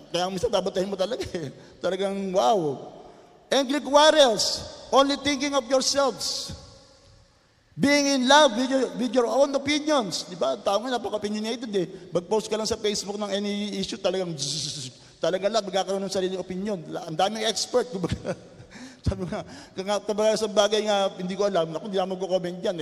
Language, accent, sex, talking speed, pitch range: Filipino, native, male, 185 wpm, 170-235 Hz